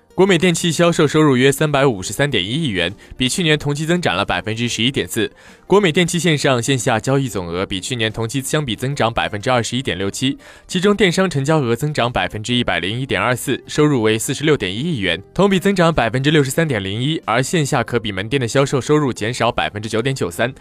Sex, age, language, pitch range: male, 20-39, Chinese, 115-160 Hz